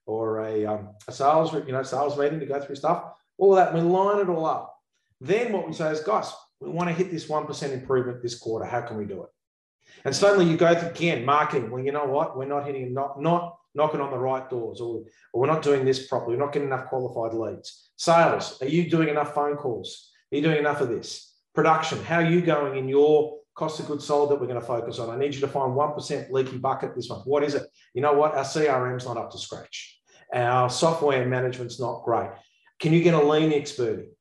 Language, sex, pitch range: English, male, 130-170 Hz